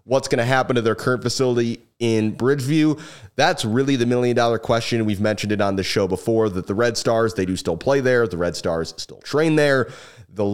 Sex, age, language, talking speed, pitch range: male, 30-49, English, 215 wpm, 100-120 Hz